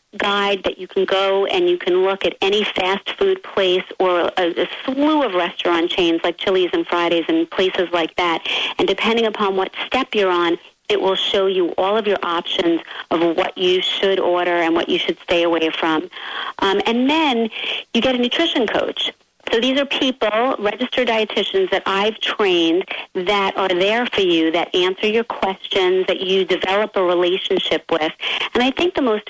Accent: American